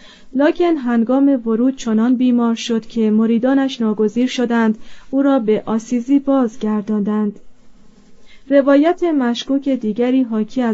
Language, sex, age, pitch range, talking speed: Persian, female, 30-49, 220-265 Hz, 105 wpm